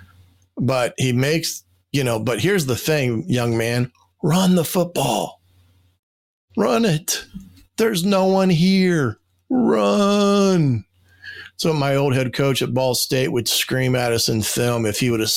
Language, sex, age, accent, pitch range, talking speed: English, male, 40-59, American, 105-135 Hz, 150 wpm